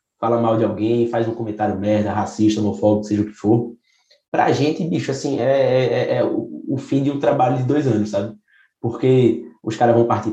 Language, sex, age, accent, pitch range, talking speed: Portuguese, male, 20-39, Brazilian, 110-140 Hz, 205 wpm